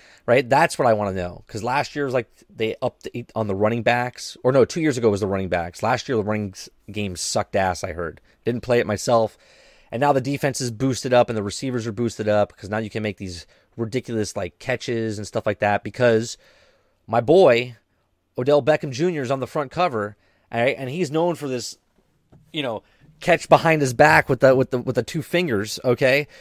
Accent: American